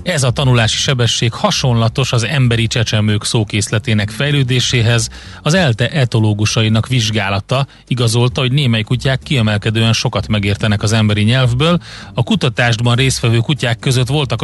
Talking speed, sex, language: 125 wpm, male, Hungarian